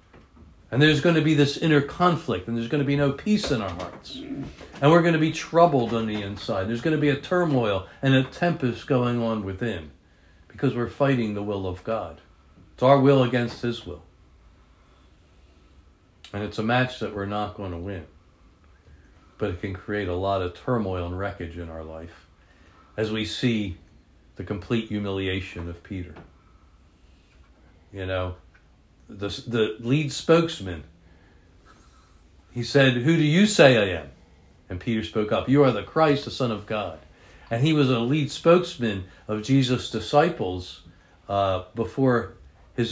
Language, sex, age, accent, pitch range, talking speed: English, male, 60-79, American, 85-120 Hz, 170 wpm